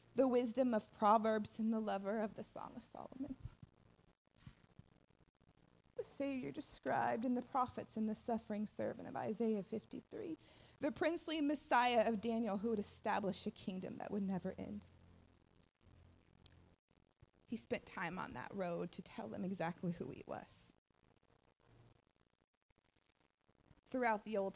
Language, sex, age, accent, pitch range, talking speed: English, female, 20-39, American, 190-240 Hz, 135 wpm